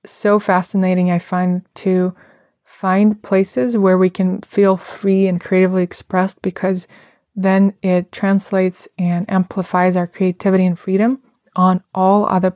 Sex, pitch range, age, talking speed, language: female, 180-195 Hz, 20-39, 135 wpm, English